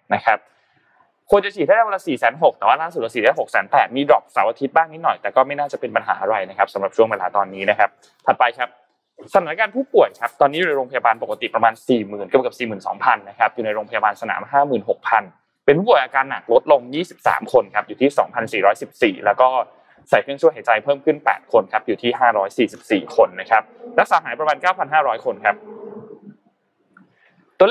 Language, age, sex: Thai, 20-39, male